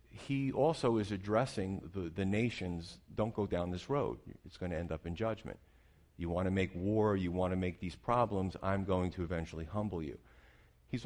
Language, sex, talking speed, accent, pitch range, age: English, male, 200 wpm, American, 85-110 Hz, 50-69